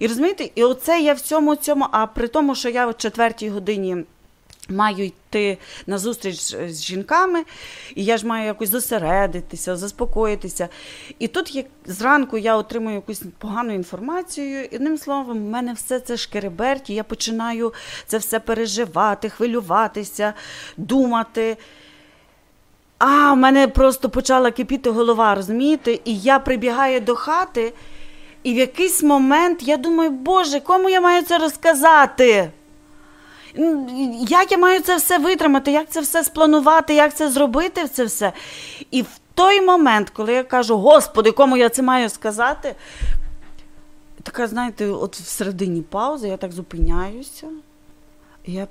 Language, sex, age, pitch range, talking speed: Ukrainian, female, 30-49, 195-275 Hz, 140 wpm